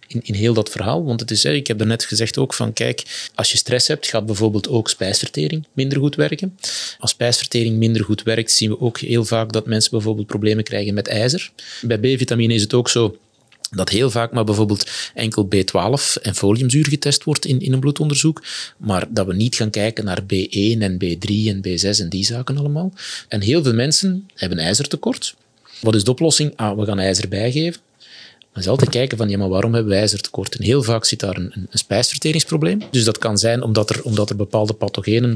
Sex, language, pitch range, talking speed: male, Dutch, 105-130 Hz, 205 wpm